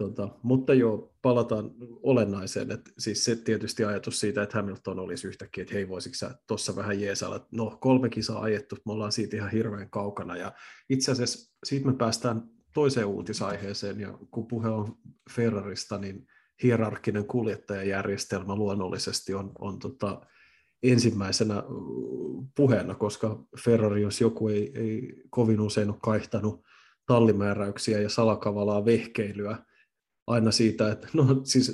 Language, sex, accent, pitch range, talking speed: Finnish, male, native, 105-120 Hz, 130 wpm